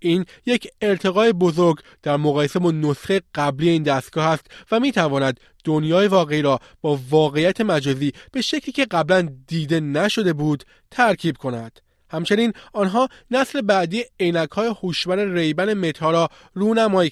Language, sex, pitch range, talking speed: Persian, male, 155-220 Hz, 140 wpm